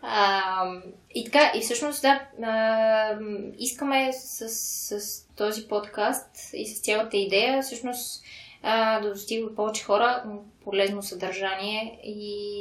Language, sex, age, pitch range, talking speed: Bulgarian, female, 20-39, 205-240 Hz, 125 wpm